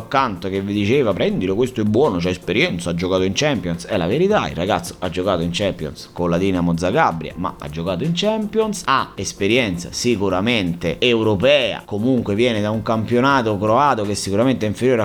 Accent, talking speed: native, 185 wpm